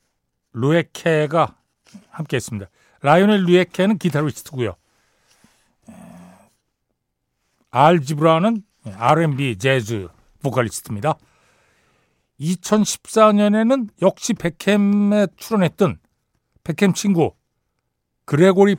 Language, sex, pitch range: Korean, male, 130-195 Hz